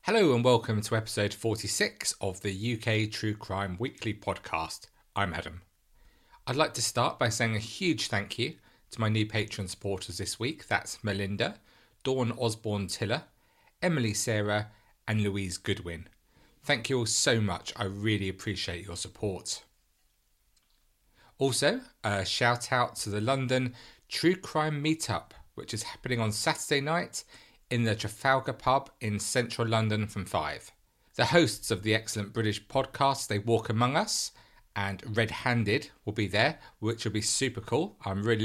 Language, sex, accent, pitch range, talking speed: English, male, British, 100-130 Hz, 155 wpm